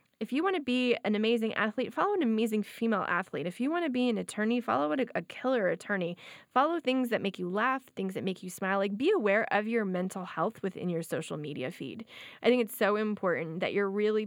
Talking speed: 230 wpm